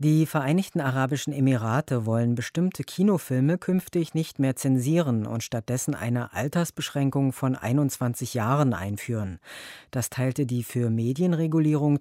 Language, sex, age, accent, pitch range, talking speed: German, female, 50-69, German, 120-150 Hz, 120 wpm